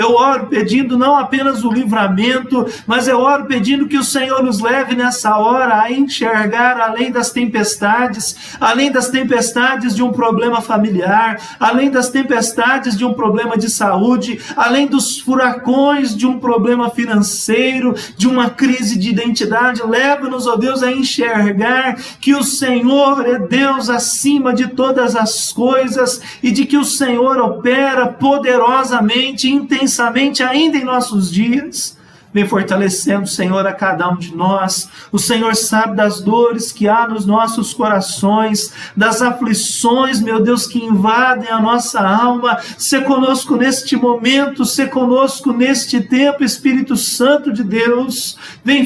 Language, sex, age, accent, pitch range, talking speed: Portuguese, male, 50-69, Brazilian, 215-260 Hz, 145 wpm